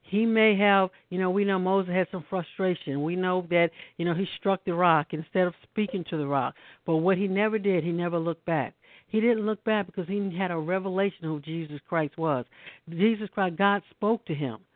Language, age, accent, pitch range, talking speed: English, 60-79, American, 165-200 Hz, 225 wpm